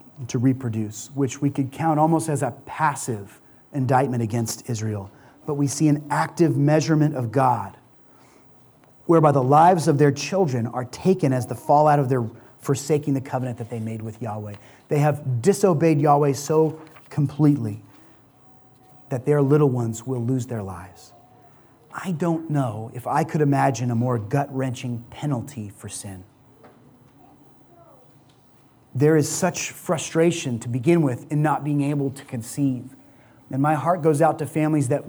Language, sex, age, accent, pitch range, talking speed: English, male, 30-49, American, 130-160 Hz, 155 wpm